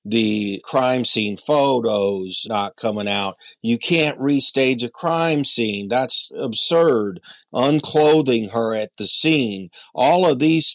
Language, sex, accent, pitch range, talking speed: English, male, American, 100-135 Hz, 130 wpm